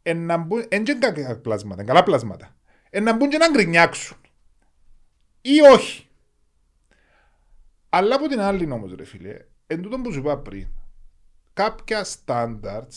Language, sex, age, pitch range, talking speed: Greek, male, 30-49, 105-165 Hz, 120 wpm